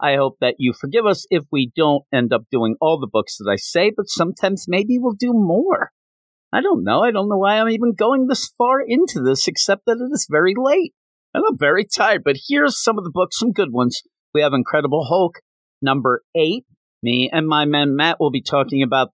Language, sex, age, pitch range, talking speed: English, male, 50-69, 115-170 Hz, 225 wpm